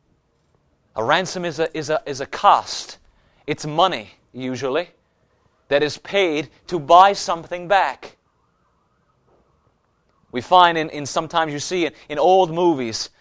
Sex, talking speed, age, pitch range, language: male, 135 wpm, 30-49, 140-175 Hz, English